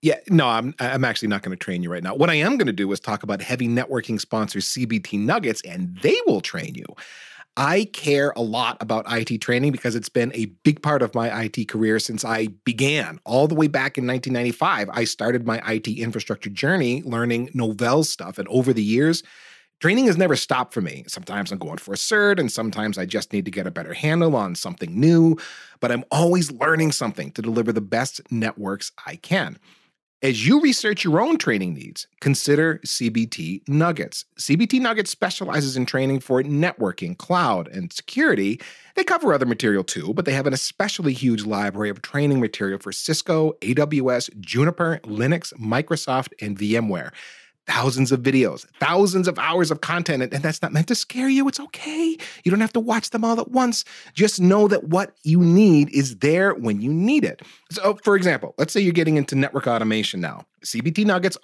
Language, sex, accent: English, male, American